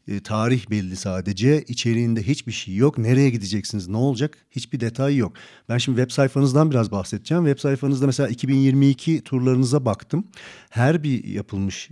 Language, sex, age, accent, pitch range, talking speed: Turkish, male, 40-59, native, 105-135 Hz, 145 wpm